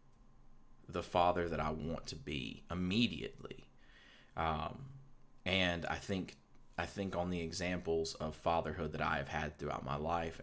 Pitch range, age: 75-90 Hz, 30-49